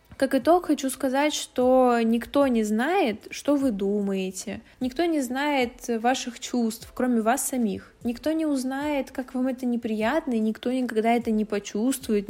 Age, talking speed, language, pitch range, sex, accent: 20-39, 155 wpm, Russian, 205-255 Hz, female, native